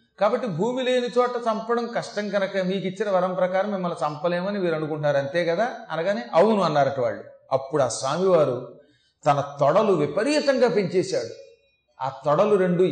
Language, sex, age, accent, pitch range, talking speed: Telugu, male, 30-49, native, 160-220 Hz, 145 wpm